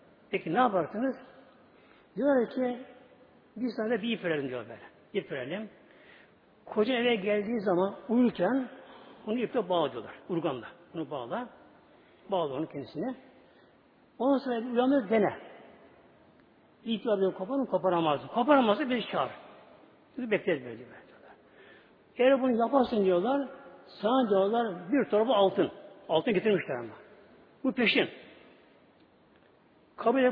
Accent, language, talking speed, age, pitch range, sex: native, Turkish, 120 wpm, 60-79, 190-265 Hz, male